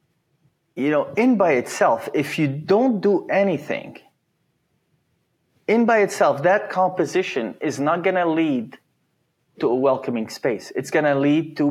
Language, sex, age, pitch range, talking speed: English, male, 30-49, 140-175 Hz, 140 wpm